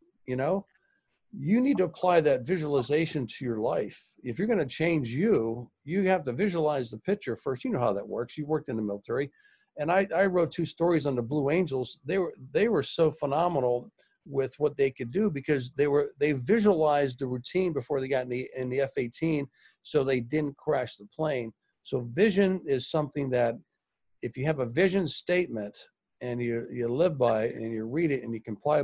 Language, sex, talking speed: English, male, 210 wpm